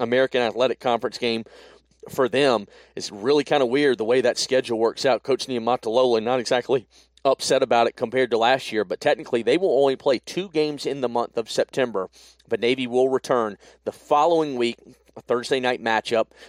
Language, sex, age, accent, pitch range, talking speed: English, male, 40-59, American, 110-130 Hz, 190 wpm